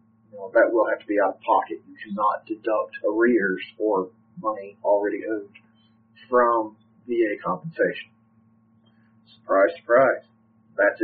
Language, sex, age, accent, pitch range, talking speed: English, male, 40-59, American, 110-165 Hz, 130 wpm